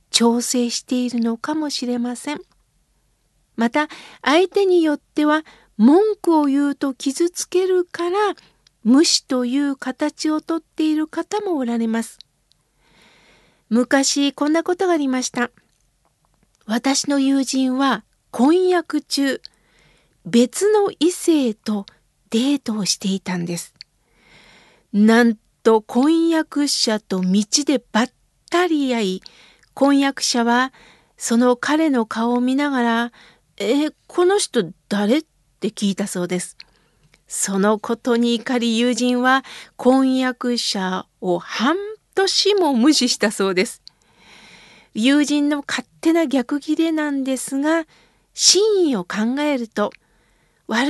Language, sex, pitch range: Japanese, female, 225-305 Hz